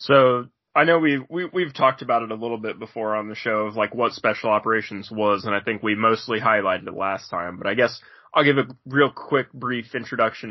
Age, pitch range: 20-39, 110-130 Hz